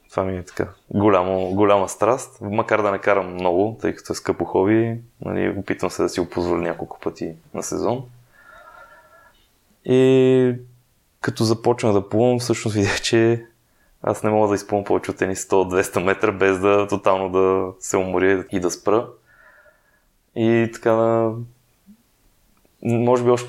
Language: Bulgarian